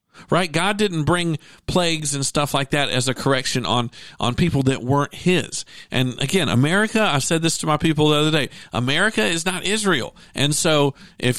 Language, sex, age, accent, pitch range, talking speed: English, male, 50-69, American, 120-165 Hz, 195 wpm